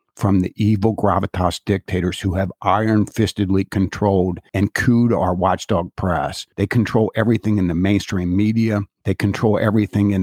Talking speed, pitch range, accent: 145 wpm, 95-115 Hz, American